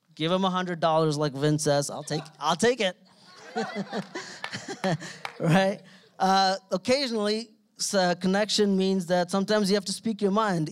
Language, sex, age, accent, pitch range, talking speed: English, male, 30-49, American, 150-180 Hz, 140 wpm